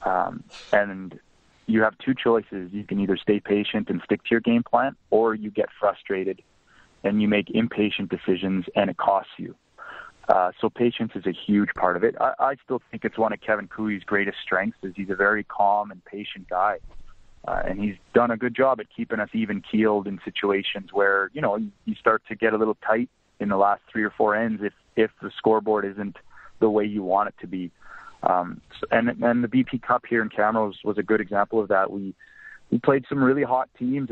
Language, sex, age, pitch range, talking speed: English, male, 20-39, 100-115 Hz, 215 wpm